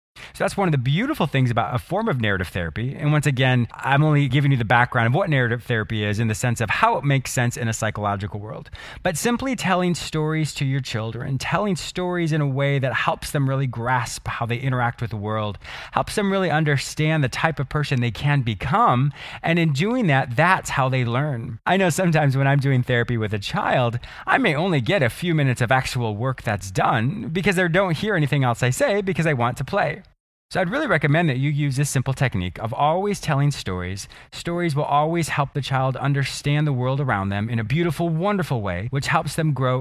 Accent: American